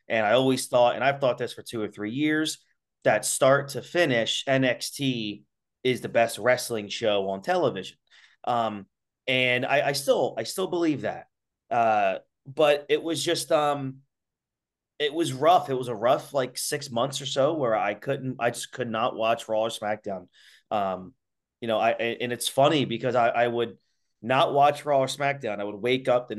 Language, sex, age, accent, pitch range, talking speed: English, male, 30-49, American, 105-135 Hz, 190 wpm